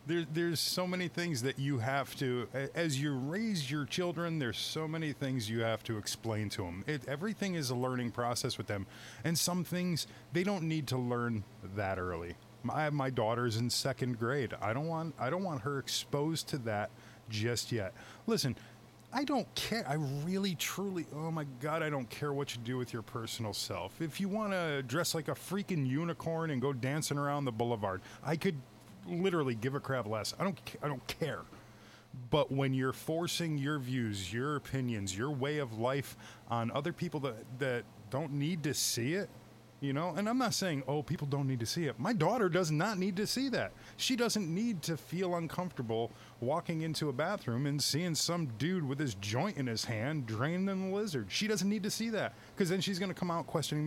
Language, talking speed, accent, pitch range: English, 205 wpm, American, 120-170 Hz